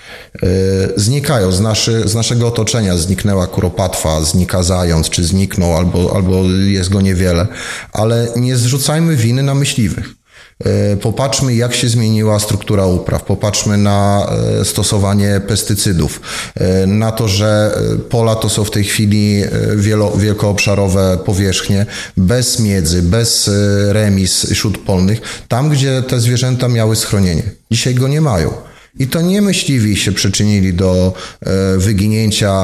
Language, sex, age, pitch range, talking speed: Polish, male, 30-49, 95-115 Hz, 120 wpm